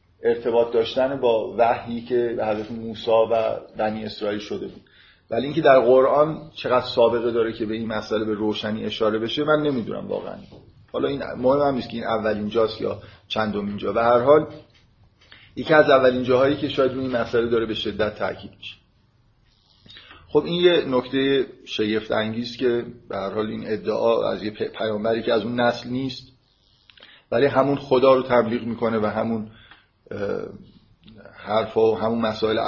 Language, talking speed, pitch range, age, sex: Persian, 165 wpm, 105-130 Hz, 30-49, male